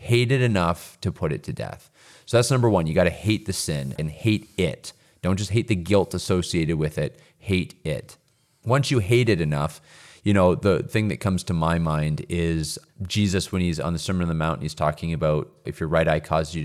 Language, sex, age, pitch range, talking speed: English, male, 30-49, 80-105 Hz, 230 wpm